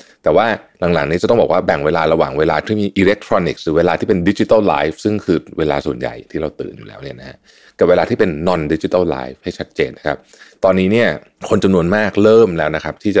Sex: male